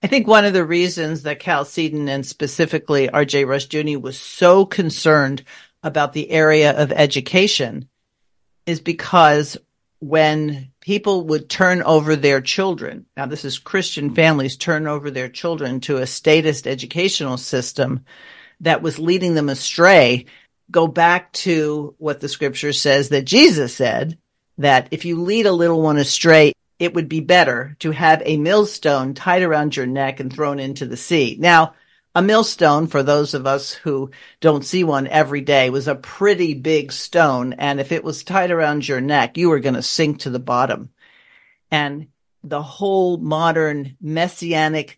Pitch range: 140-170 Hz